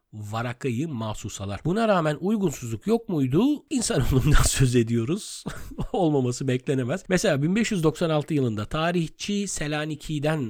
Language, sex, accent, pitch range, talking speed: Turkish, male, native, 115-160 Hz, 95 wpm